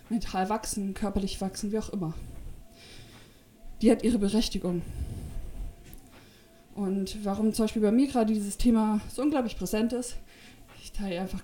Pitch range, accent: 190-235 Hz, German